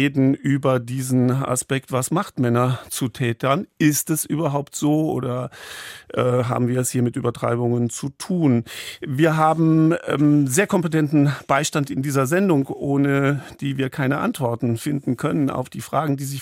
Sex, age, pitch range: male, 50-69, 125-150 Hz